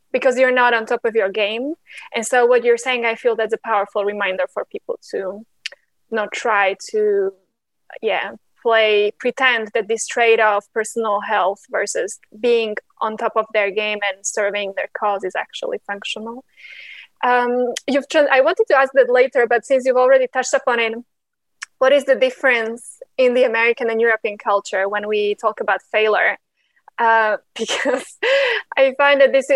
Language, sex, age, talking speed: English, female, 20-39, 170 wpm